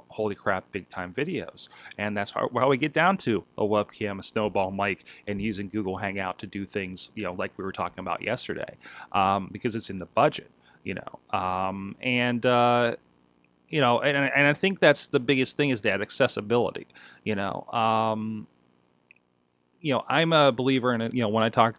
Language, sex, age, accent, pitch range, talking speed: English, male, 30-49, American, 100-125 Hz, 200 wpm